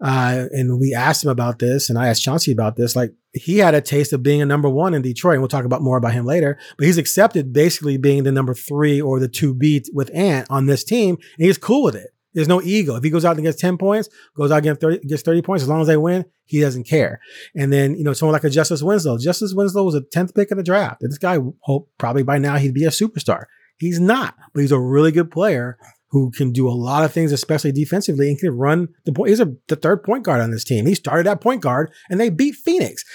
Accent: American